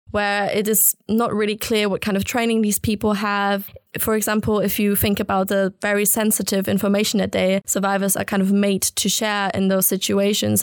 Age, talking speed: 20-39, 200 wpm